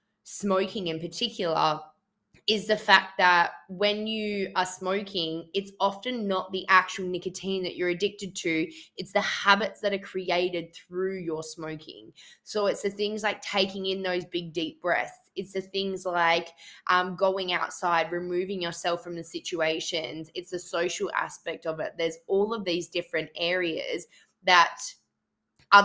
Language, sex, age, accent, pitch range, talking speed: English, female, 20-39, Australian, 175-200 Hz, 155 wpm